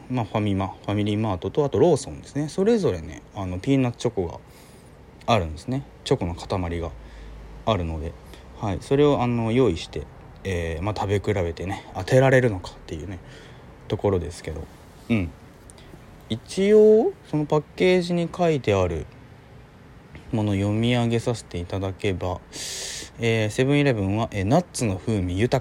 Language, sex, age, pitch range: Japanese, male, 20-39, 90-135 Hz